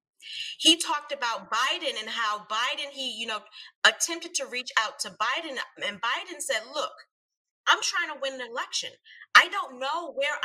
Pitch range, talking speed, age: 245-335 Hz, 170 wpm, 30-49